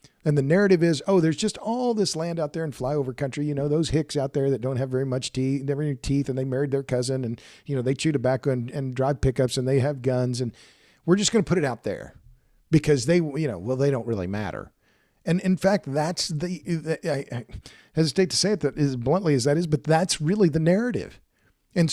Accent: American